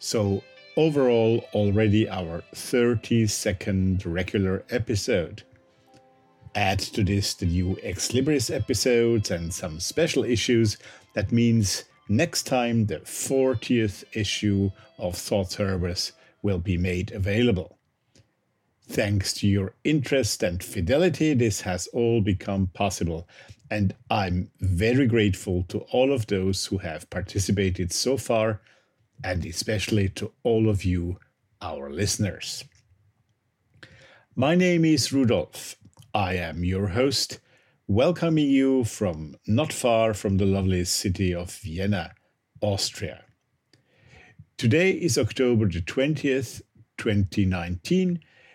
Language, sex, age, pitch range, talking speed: English, male, 50-69, 95-120 Hz, 110 wpm